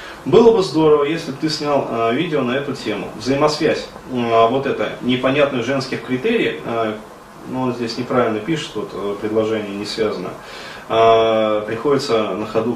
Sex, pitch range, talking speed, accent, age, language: male, 115-145 Hz, 155 wpm, native, 20-39, Russian